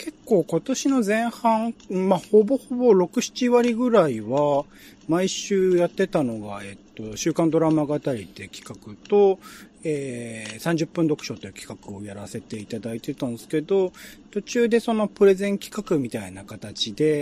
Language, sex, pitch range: Japanese, male, 130-205 Hz